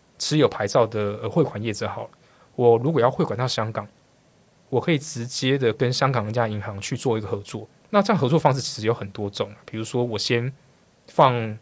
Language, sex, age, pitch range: Chinese, male, 20-39, 110-140 Hz